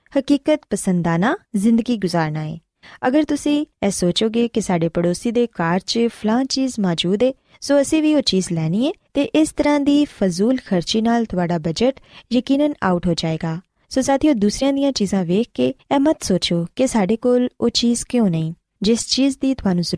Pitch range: 180-270 Hz